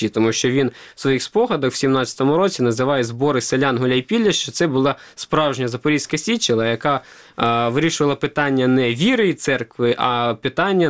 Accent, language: native, Ukrainian